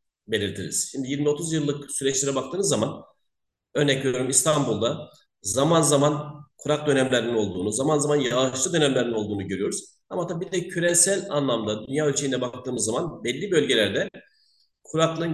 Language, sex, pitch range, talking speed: Turkish, male, 135-165 Hz, 130 wpm